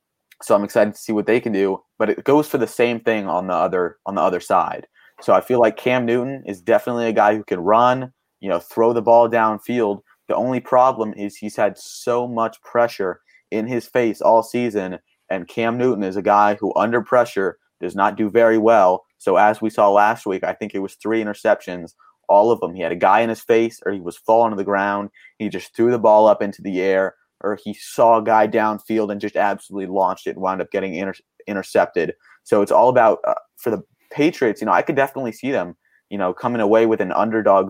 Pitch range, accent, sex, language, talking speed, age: 100-120 Hz, American, male, English, 235 wpm, 30-49